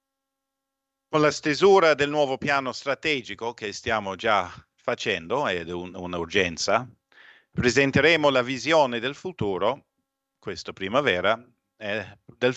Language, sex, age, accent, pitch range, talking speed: Italian, male, 50-69, native, 110-145 Hz, 105 wpm